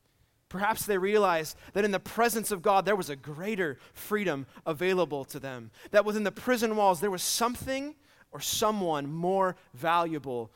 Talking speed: 165 wpm